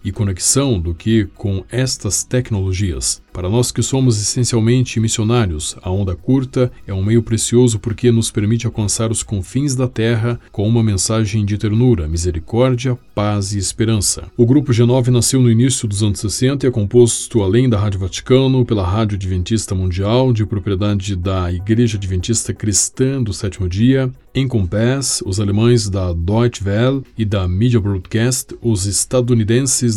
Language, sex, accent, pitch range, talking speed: Portuguese, male, Brazilian, 100-125 Hz, 160 wpm